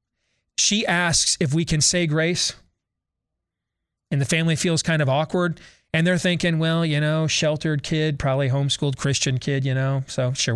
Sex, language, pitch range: male, English, 140-175 Hz